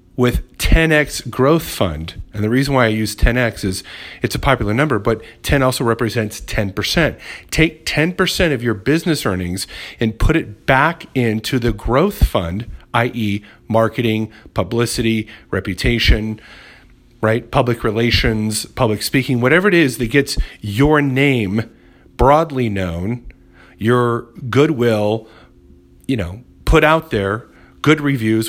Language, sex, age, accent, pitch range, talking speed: English, male, 40-59, American, 105-140 Hz, 130 wpm